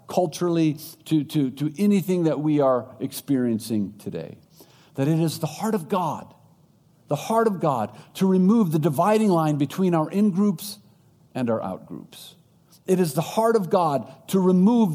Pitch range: 160-210 Hz